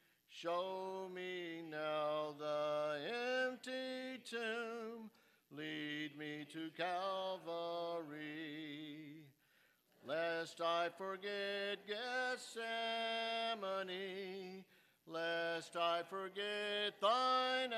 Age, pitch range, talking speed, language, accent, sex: 50-69, 160-220 Hz, 60 wpm, English, American, male